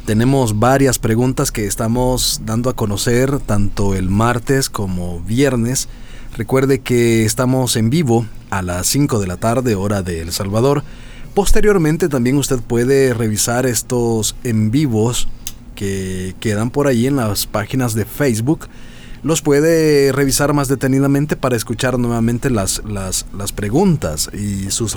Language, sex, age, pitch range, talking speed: Spanish, male, 30-49, 105-135 Hz, 140 wpm